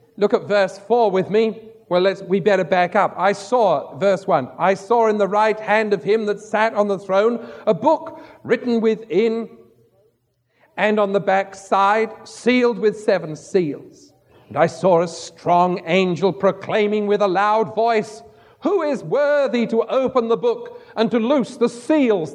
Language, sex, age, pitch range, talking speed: English, male, 50-69, 180-230 Hz, 170 wpm